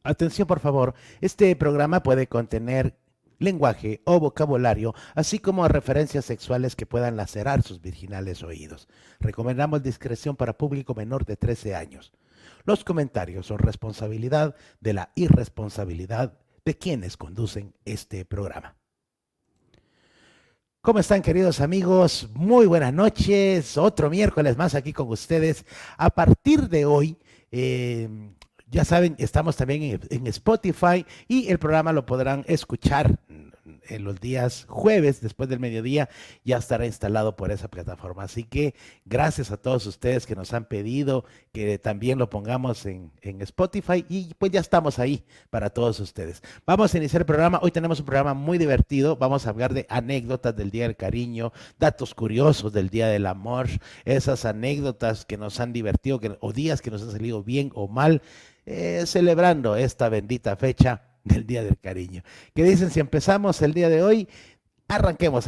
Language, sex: Spanish, male